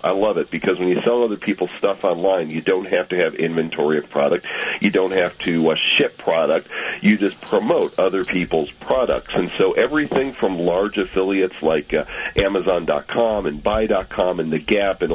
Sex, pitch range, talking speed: male, 80-105 Hz, 185 wpm